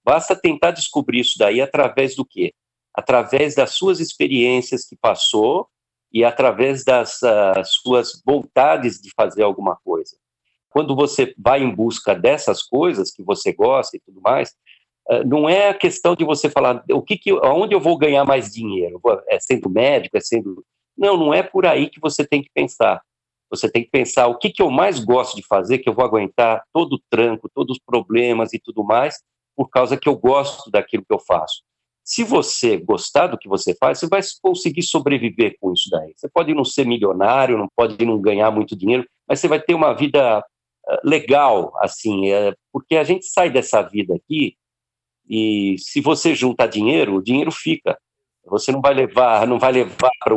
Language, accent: Portuguese, Brazilian